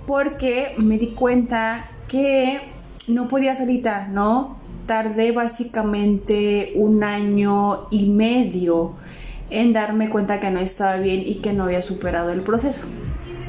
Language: Spanish